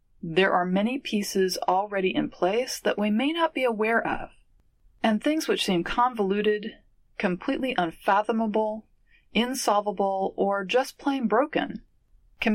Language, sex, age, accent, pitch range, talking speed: English, female, 30-49, American, 175-235 Hz, 130 wpm